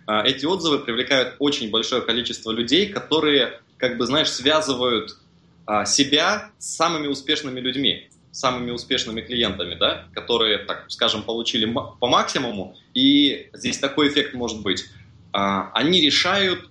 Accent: native